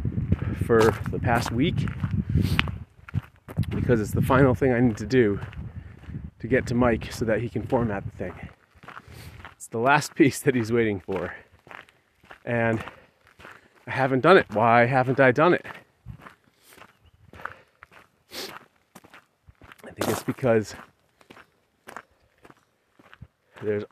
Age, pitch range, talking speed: 30-49, 105-125 Hz, 120 wpm